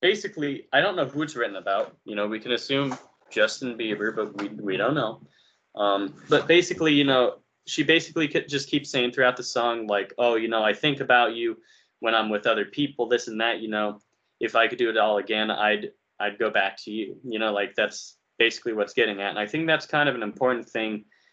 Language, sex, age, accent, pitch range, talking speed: English, male, 20-39, American, 105-150 Hz, 230 wpm